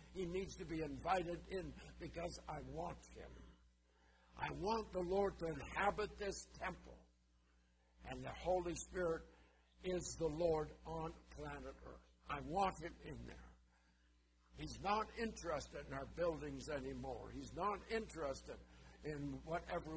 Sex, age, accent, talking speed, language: male, 60-79, American, 135 wpm, English